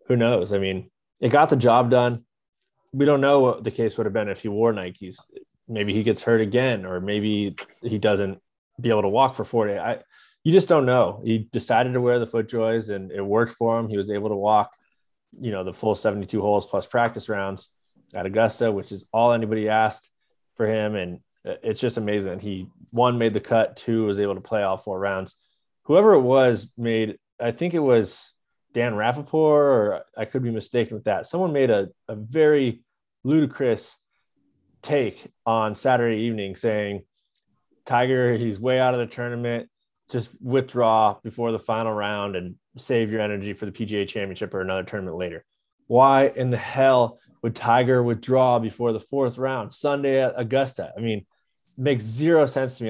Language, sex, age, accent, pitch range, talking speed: English, male, 20-39, American, 105-125 Hz, 190 wpm